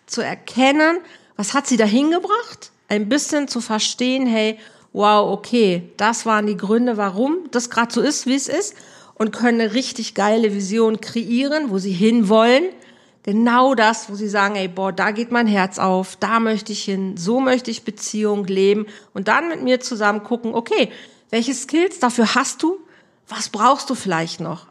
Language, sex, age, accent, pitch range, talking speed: German, female, 50-69, German, 200-250 Hz, 180 wpm